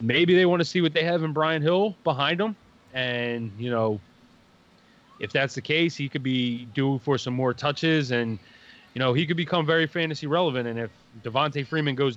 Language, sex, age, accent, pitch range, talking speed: English, male, 20-39, American, 120-145 Hz, 205 wpm